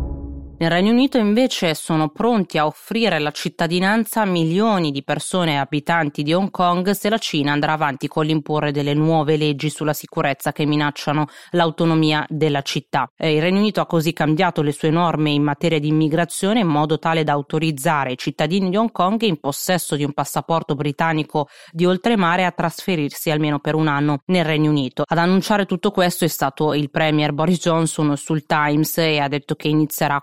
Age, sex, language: 30-49, female, Italian